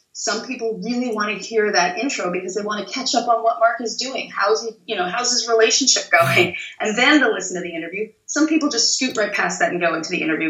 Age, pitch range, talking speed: 30-49, 180-235 Hz, 265 wpm